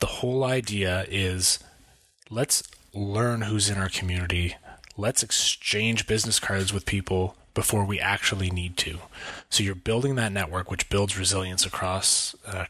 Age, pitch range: 30-49, 95-115 Hz